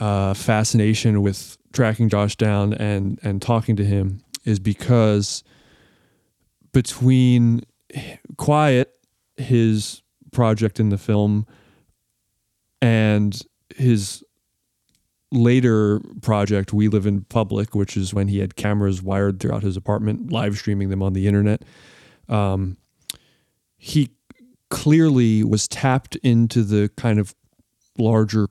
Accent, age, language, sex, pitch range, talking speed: American, 30-49, English, male, 100-115 Hz, 115 wpm